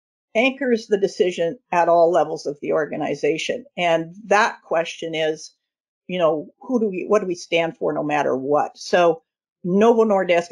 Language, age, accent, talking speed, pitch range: English, 50-69, American, 165 wpm, 165-215 Hz